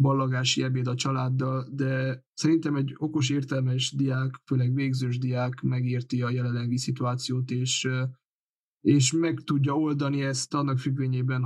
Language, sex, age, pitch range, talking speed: Hungarian, male, 20-39, 130-145 Hz, 130 wpm